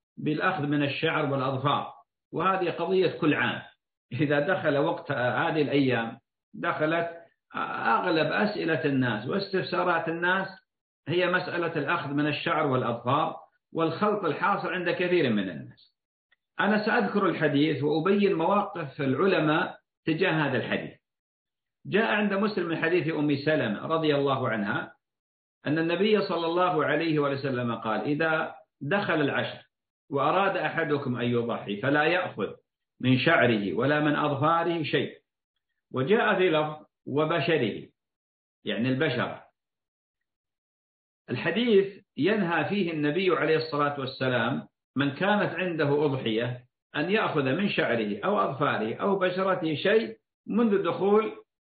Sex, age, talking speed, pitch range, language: male, 50-69, 115 wpm, 140-180 Hz, Arabic